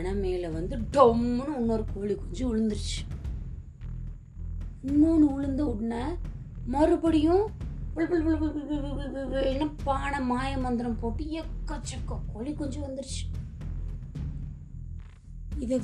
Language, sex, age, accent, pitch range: Tamil, female, 20-39, native, 195-280 Hz